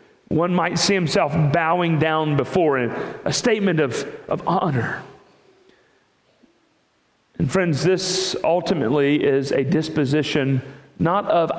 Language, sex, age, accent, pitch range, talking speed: English, male, 40-59, American, 130-195 Hz, 115 wpm